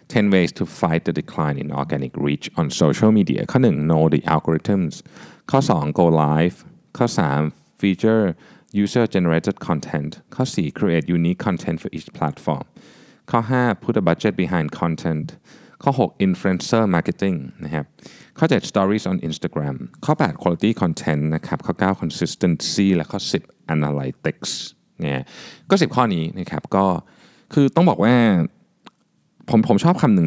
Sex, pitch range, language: male, 80-100 Hz, Thai